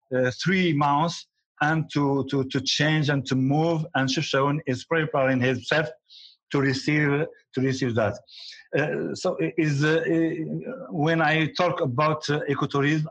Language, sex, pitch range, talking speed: English, male, 130-160 Hz, 150 wpm